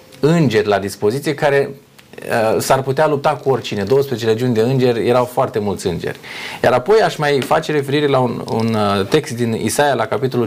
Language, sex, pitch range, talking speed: Romanian, male, 115-145 Hz, 190 wpm